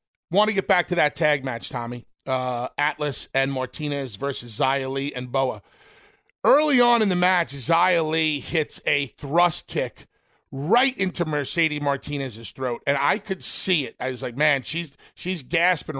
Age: 40-59